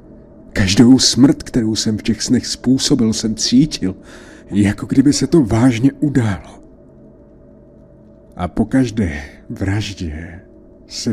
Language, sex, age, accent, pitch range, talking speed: Czech, male, 50-69, native, 95-115 Hz, 115 wpm